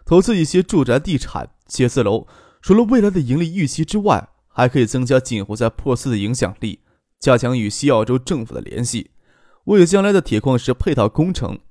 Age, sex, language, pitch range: 20-39, male, Chinese, 115-160 Hz